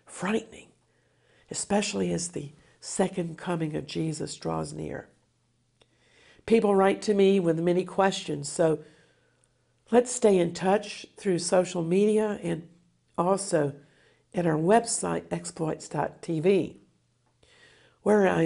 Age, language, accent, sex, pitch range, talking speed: 60-79, English, American, female, 155-200 Hz, 105 wpm